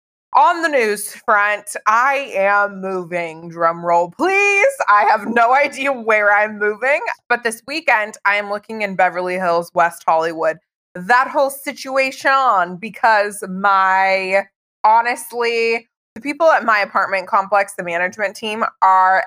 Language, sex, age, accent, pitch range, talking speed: English, female, 20-39, American, 185-250 Hz, 140 wpm